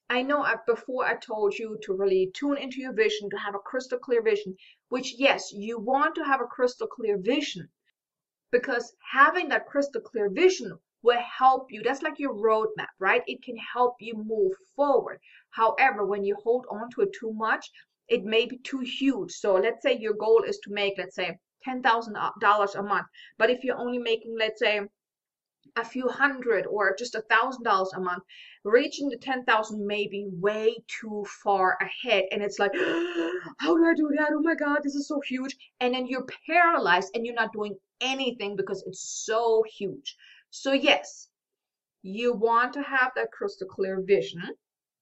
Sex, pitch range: female, 210-280 Hz